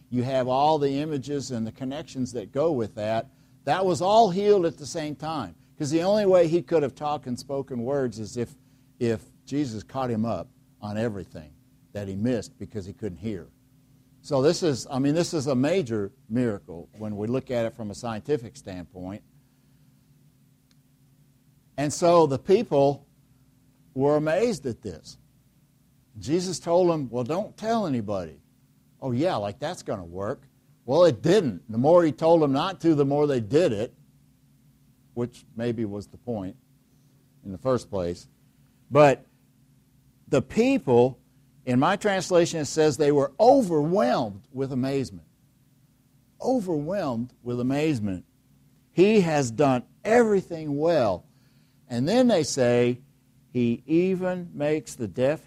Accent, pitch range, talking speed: American, 120-150 Hz, 155 wpm